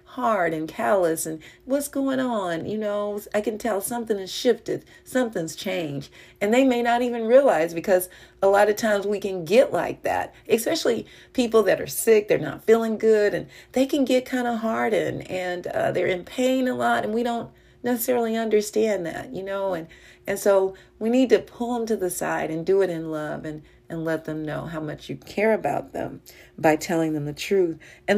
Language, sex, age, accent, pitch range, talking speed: English, female, 40-59, American, 175-235 Hz, 205 wpm